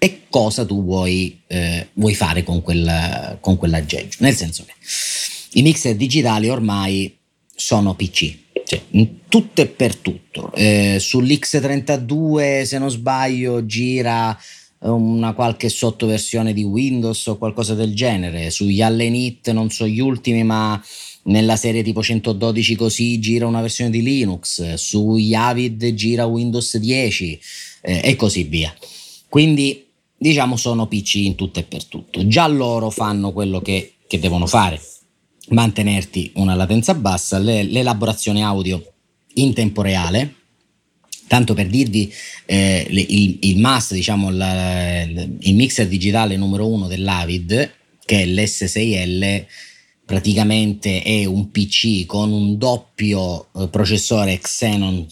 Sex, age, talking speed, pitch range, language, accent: male, 30-49, 130 wpm, 95-115 Hz, Italian, native